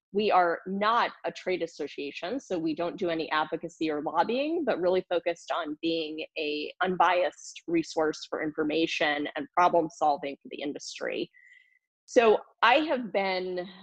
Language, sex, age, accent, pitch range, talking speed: English, female, 30-49, American, 165-205 Hz, 150 wpm